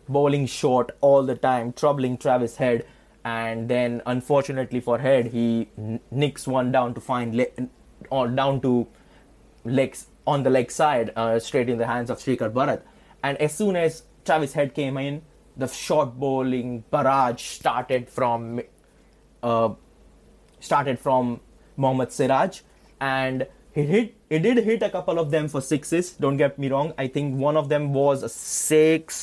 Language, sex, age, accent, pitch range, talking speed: English, male, 20-39, Indian, 120-150 Hz, 160 wpm